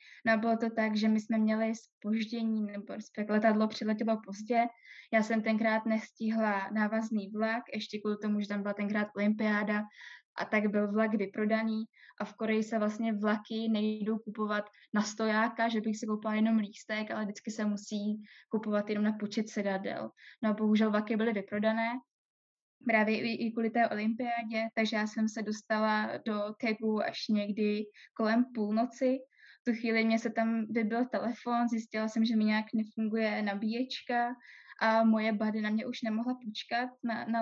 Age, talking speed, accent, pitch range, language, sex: 10-29, 170 wpm, native, 210-225 Hz, Czech, female